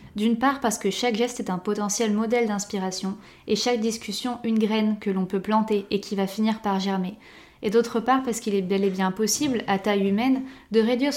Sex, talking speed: female, 220 wpm